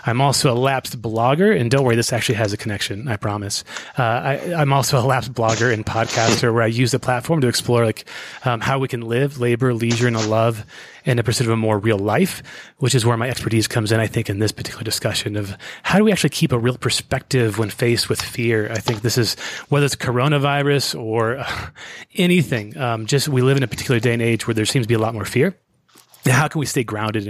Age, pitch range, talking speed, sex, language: 30-49, 115-140 Hz, 240 wpm, male, English